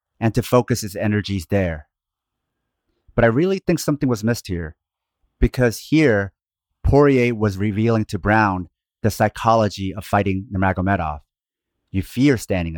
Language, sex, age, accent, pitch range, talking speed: English, male, 30-49, American, 95-115 Hz, 135 wpm